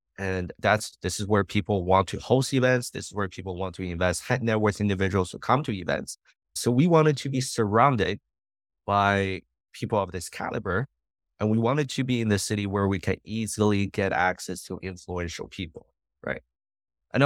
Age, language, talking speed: 30-49, English, 190 wpm